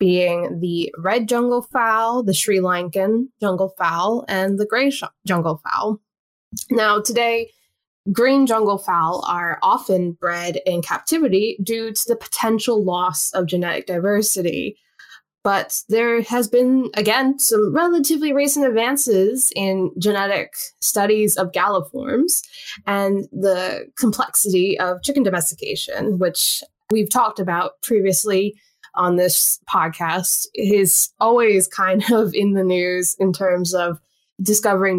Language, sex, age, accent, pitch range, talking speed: English, female, 10-29, American, 180-235 Hz, 125 wpm